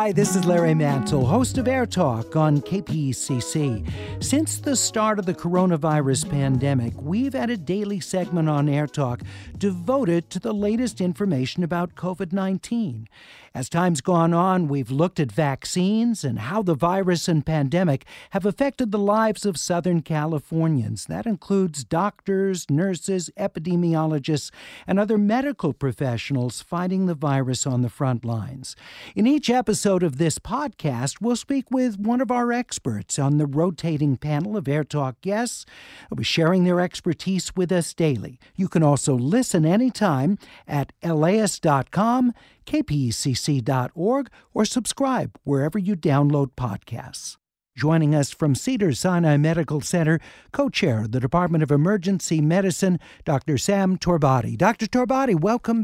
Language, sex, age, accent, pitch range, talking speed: English, male, 50-69, American, 145-200 Hz, 145 wpm